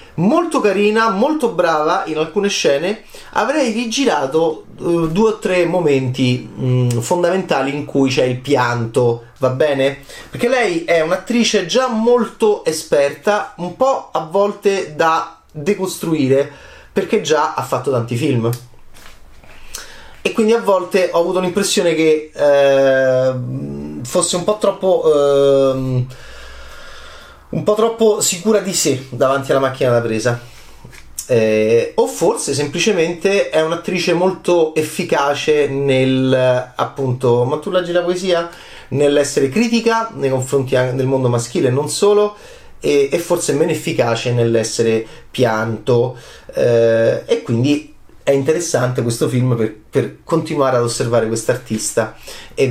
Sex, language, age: male, Italian, 30-49